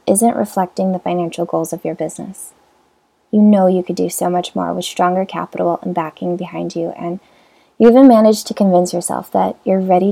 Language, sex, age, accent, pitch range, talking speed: English, female, 20-39, American, 175-210 Hz, 195 wpm